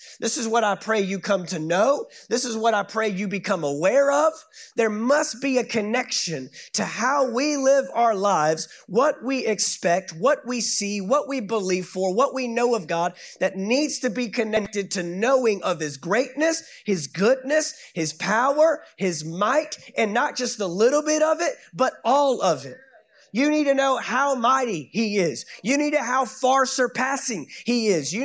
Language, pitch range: English, 215-275 Hz